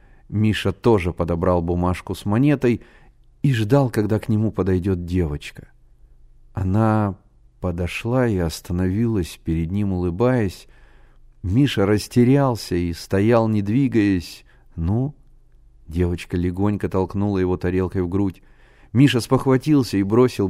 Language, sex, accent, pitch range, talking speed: Russian, male, native, 90-120 Hz, 110 wpm